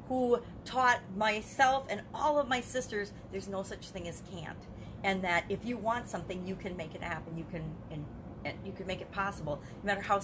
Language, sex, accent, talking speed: English, female, American, 215 wpm